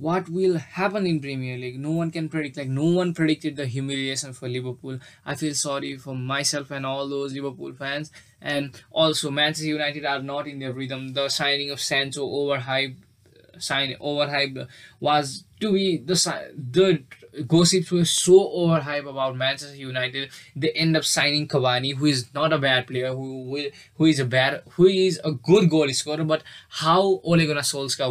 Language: English